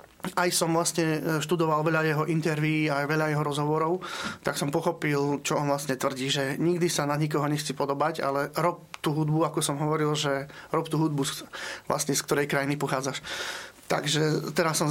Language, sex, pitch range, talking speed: Slovak, male, 150-165 Hz, 175 wpm